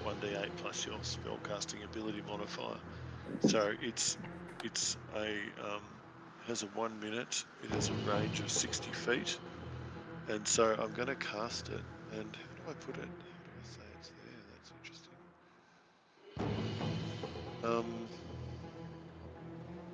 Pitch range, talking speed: 105-165 Hz, 125 wpm